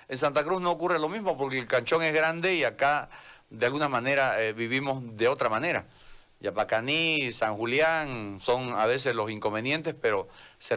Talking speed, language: 180 wpm, Spanish